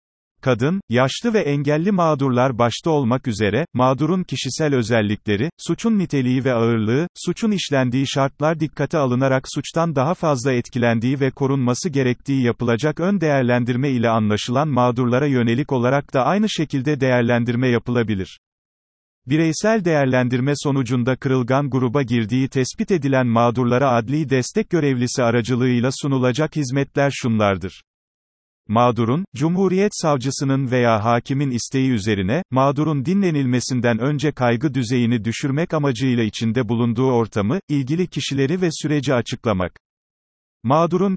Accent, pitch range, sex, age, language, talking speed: native, 120-150 Hz, male, 40-59, Turkish, 115 wpm